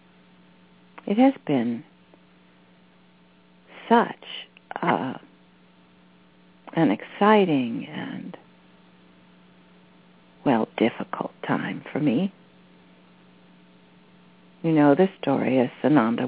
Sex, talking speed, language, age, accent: female, 65 wpm, English, 60-79, American